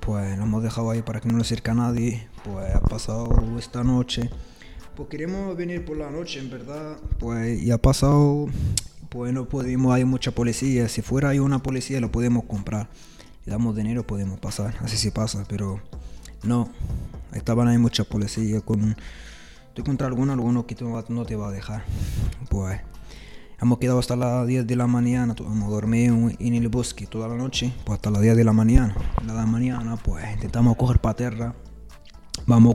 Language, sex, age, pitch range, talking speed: Spanish, male, 20-39, 105-125 Hz, 185 wpm